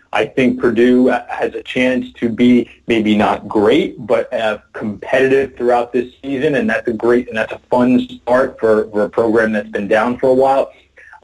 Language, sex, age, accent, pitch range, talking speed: English, male, 30-49, American, 115-135 Hz, 200 wpm